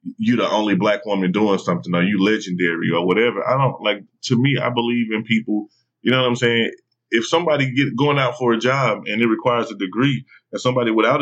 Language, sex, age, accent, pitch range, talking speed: English, male, 20-39, American, 105-125 Hz, 230 wpm